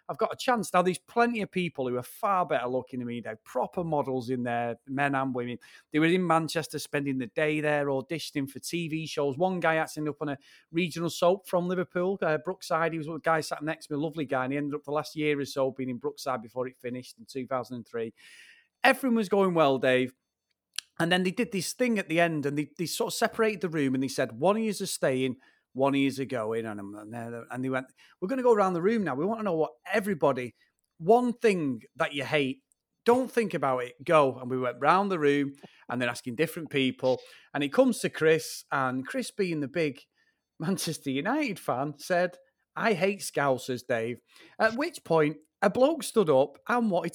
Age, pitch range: 30-49, 135-190 Hz